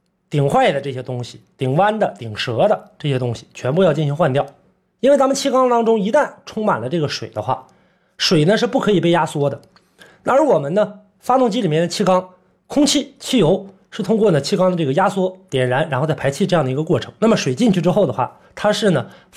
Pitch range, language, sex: 145-210 Hz, Chinese, male